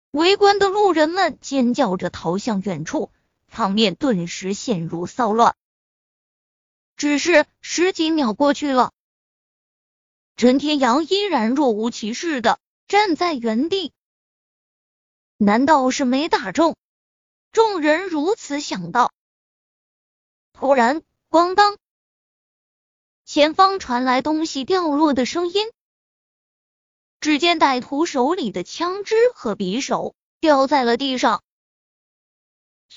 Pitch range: 240-345 Hz